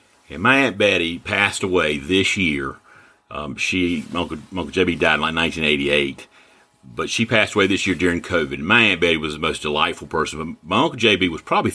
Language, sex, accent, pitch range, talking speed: English, male, American, 75-105 Hz, 200 wpm